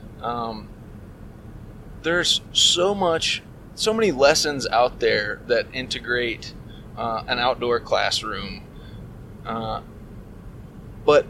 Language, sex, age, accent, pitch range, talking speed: English, male, 20-39, American, 110-140 Hz, 90 wpm